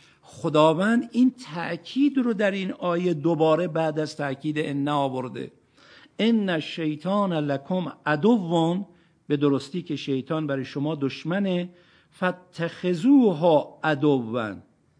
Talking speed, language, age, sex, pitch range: 105 wpm, Persian, 50-69, male, 135-190 Hz